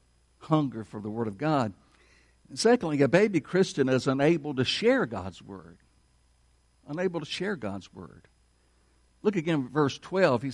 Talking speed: 160 wpm